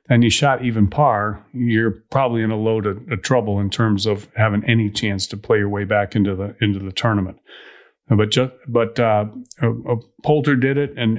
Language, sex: English, male